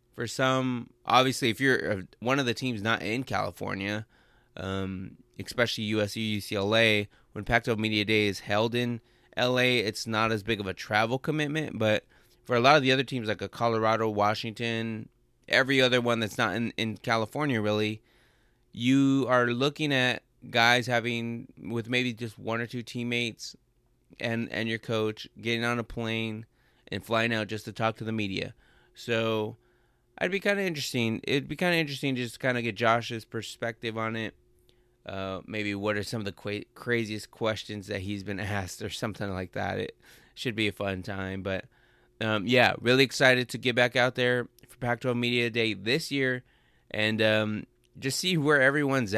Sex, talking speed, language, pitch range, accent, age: male, 180 wpm, English, 105-125 Hz, American, 20-39